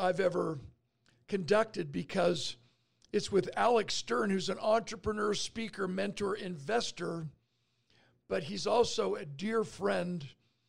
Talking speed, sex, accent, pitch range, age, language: 110 wpm, male, American, 165-210 Hz, 50-69, English